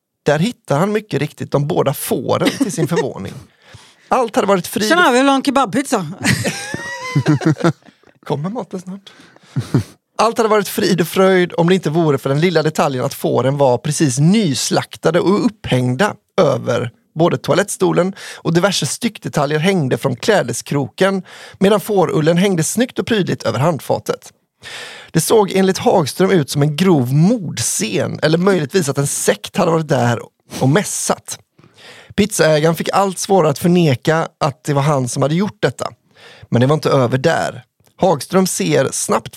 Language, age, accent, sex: English, 30-49, Swedish, male